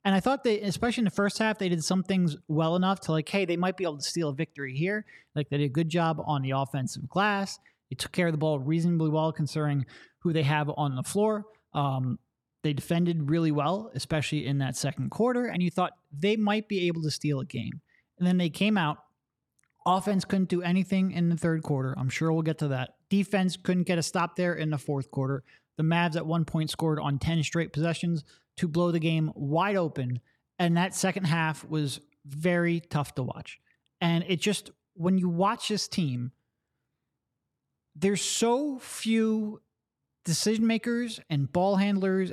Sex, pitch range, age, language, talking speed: male, 150-190 Hz, 20-39, English, 205 wpm